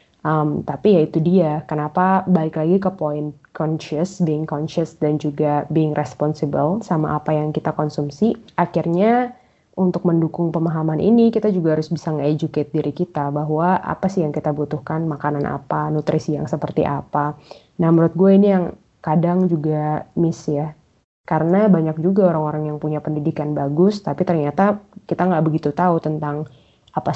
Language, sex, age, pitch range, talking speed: Indonesian, female, 20-39, 155-180 Hz, 155 wpm